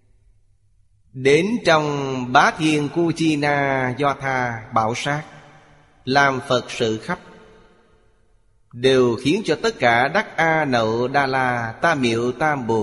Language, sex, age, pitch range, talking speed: Vietnamese, male, 20-39, 115-145 Hz, 125 wpm